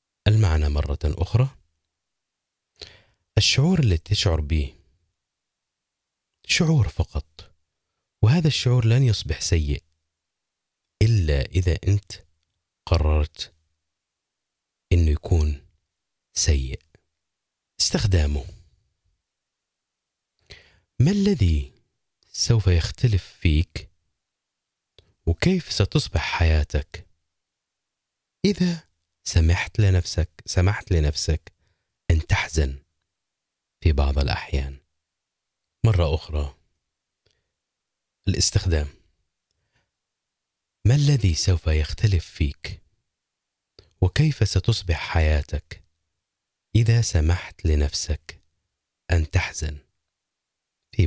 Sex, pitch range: male, 75-100 Hz